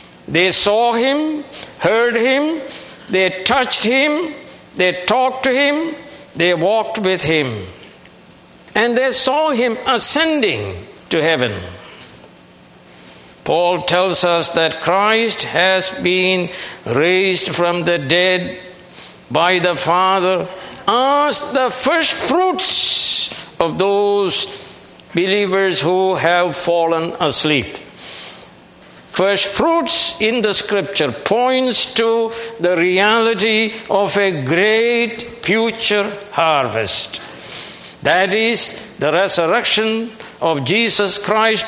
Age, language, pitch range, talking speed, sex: 60-79, English, 175-235 Hz, 100 wpm, male